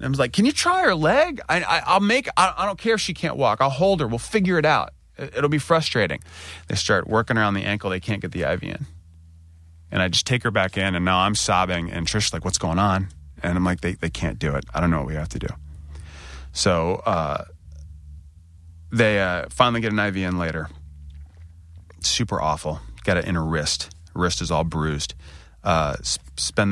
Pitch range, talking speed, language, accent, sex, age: 80-105 Hz, 220 wpm, English, American, male, 30-49